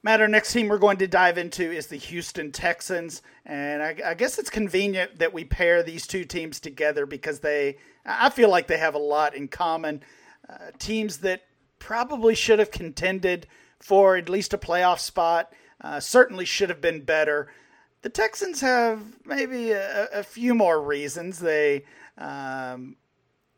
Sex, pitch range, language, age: male, 150-205 Hz, English, 40-59